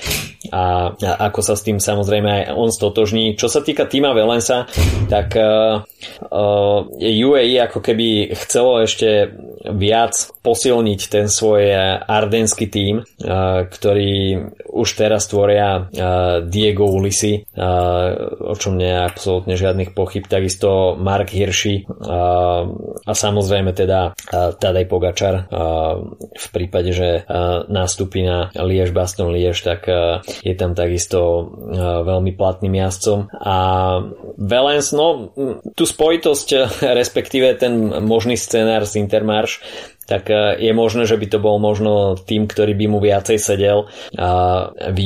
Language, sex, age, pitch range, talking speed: Slovak, male, 20-39, 95-105 Hz, 130 wpm